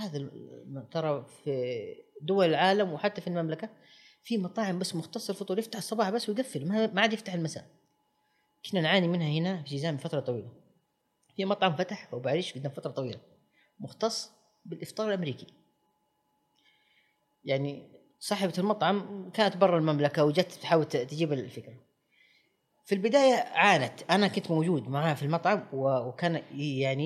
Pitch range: 145-195 Hz